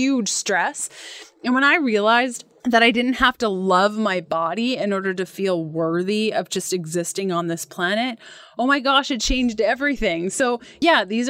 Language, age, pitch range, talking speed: English, 20-39, 195-255 Hz, 180 wpm